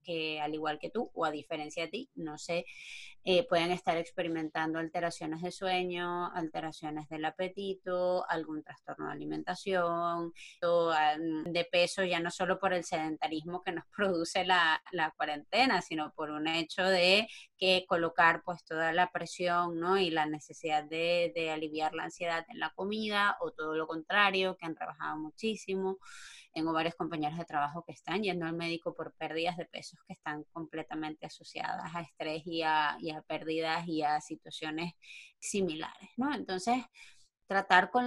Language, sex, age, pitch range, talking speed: Spanish, female, 20-39, 165-190 Hz, 165 wpm